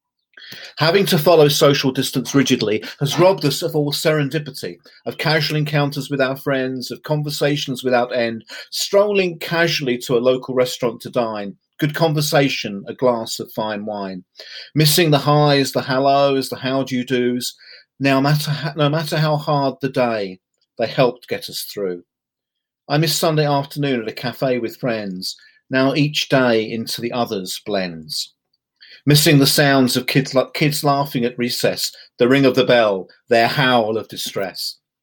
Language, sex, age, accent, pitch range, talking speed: English, male, 40-59, British, 125-155 Hz, 160 wpm